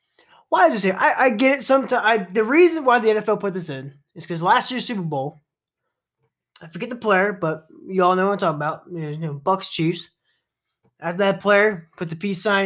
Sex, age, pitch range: male, 20-39, 165-235 Hz